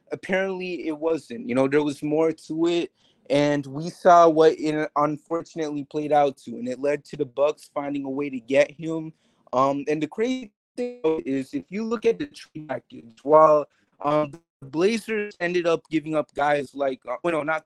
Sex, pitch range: male, 140-175 Hz